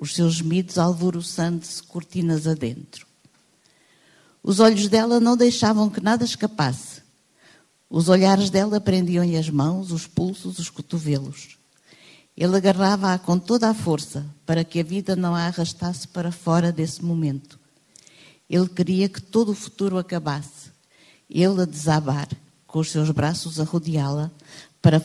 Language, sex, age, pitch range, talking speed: Portuguese, female, 50-69, 150-185 Hz, 140 wpm